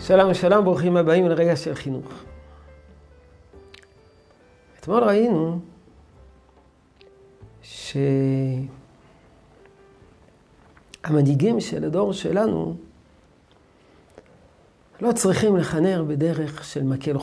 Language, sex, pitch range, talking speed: Hebrew, male, 140-190 Hz, 65 wpm